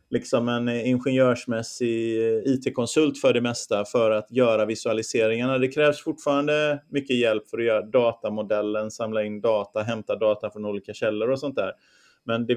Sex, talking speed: male, 160 wpm